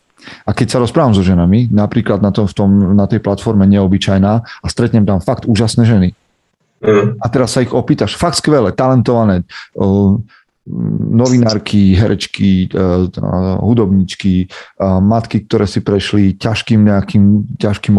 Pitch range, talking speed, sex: 95-120 Hz, 130 wpm, male